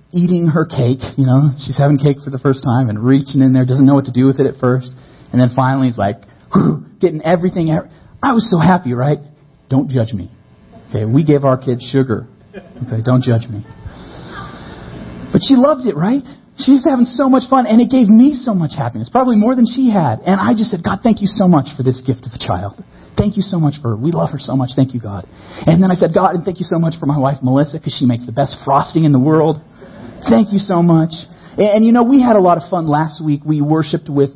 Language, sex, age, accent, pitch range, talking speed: English, male, 40-59, American, 125-180 Hz, 250 wpm